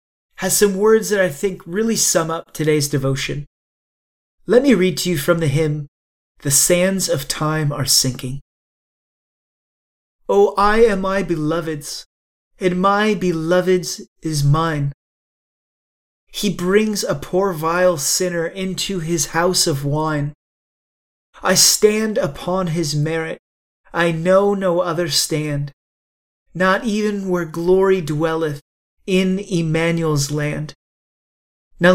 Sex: male